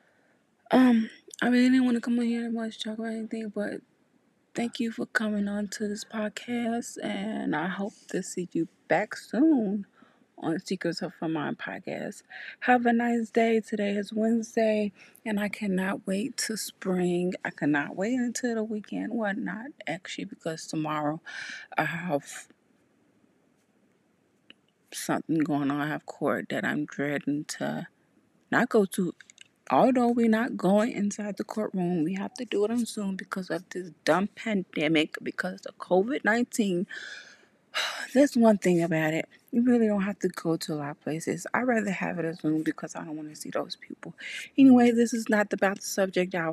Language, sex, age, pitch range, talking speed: English, female, 30-49, 180-235 Hz, 175 wpm